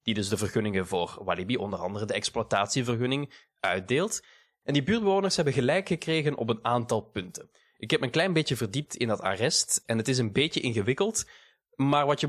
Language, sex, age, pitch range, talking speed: Dutch, male, 20-39, 105-150 Hz, 195 wpm